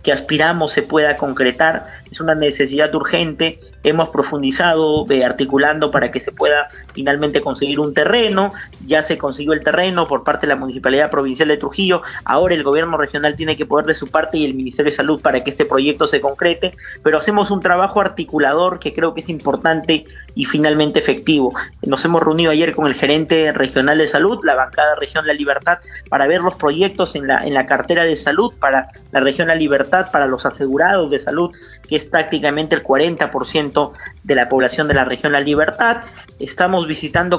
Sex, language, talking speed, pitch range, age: male, Spanish, 190 wpm, 145-170 Hz, 30-49